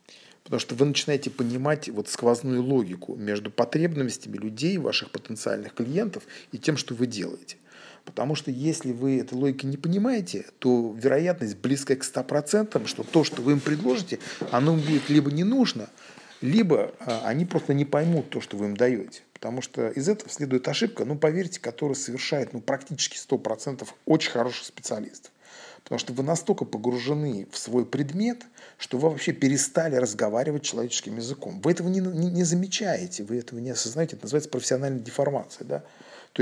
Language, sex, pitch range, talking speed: Russian, male, 120-155 Hz, 160 wpm